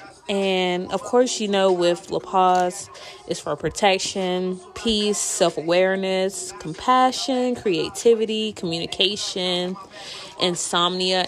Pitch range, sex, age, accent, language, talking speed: 175-210 Hz, female, 20-39, American, English, 90 wpm